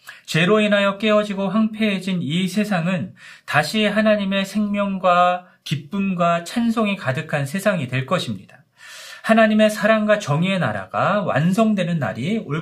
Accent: native